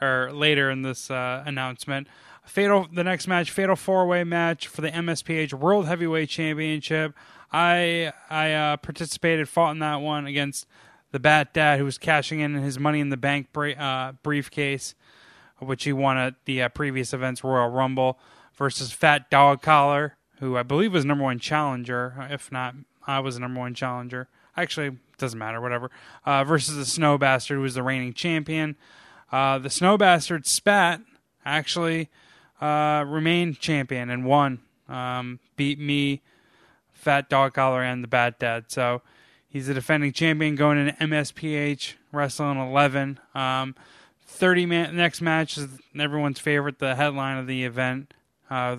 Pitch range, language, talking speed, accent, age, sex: 130-155 Hz, English, 160 wpm, American, 10-29, male